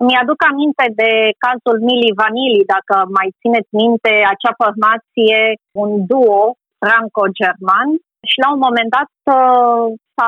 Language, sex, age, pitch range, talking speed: Romanian, female, 30-49, 205-245 Hz, 125 wpm